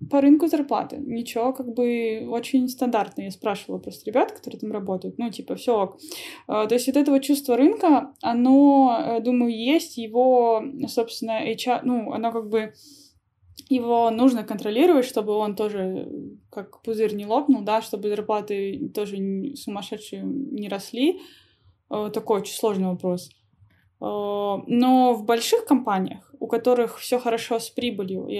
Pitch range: 205-250 Hz